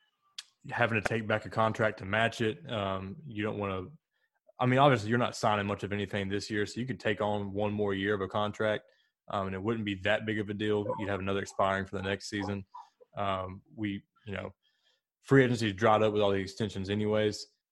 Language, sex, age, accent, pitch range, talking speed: English, male, 20-39, American, 100-115 Hz, 230 wpm